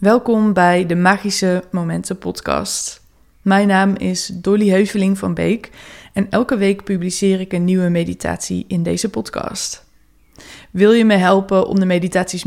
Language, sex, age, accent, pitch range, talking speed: Dutch, female, 20-39, Dutch, 175-195 Hz, 150 wpm